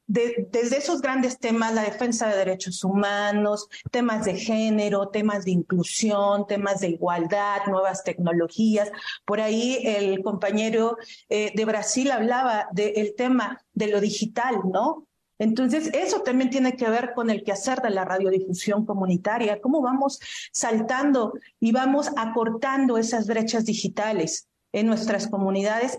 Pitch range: 200-235 Hz